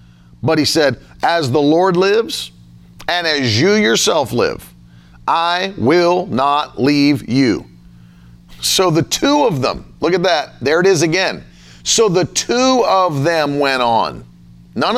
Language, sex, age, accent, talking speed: English, male, 40-59, American, 150 wpm